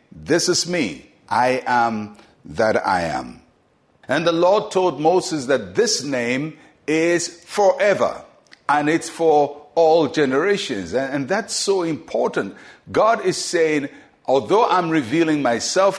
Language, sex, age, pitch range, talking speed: English, male, 50-69, 135-170 Hz, 130 wpm